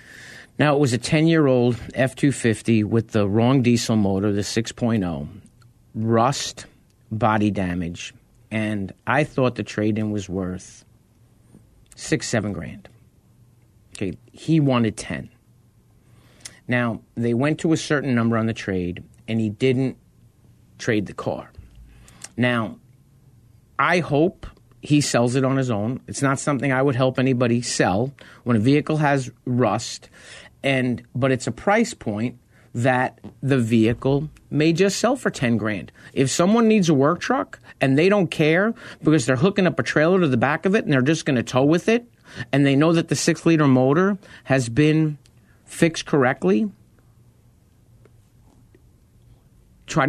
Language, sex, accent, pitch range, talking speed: English, male, American, 115-150 Hz, 155 wpm